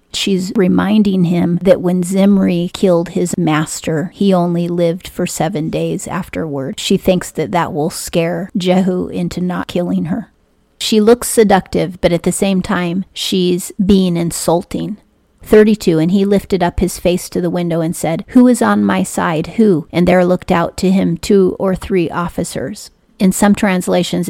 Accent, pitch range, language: American, 170-195 Hz, English